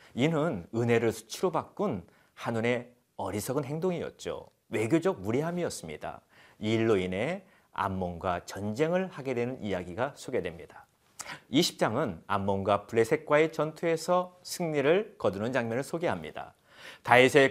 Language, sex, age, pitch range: Korean, male, 40-59, 115-170 Hz